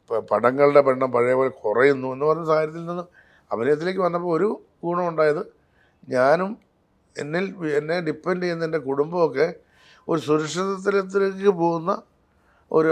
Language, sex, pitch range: Malayalam, male, 115-150 Hz